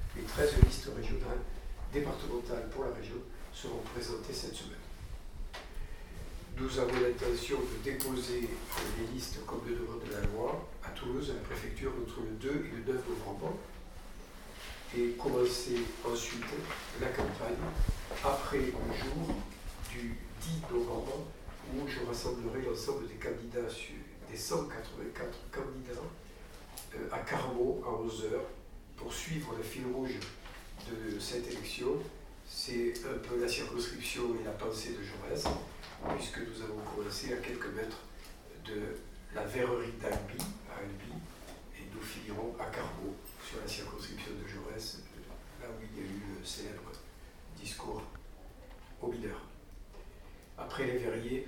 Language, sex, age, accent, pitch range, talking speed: French, male, 60-79, French, 100-125 Hz, 140 wpm